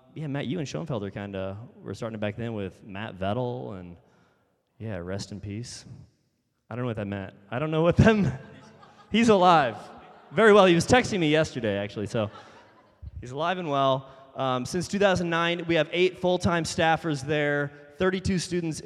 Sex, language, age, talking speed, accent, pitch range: male, English, 20-39, 180 wpm, American, 105-155 Hz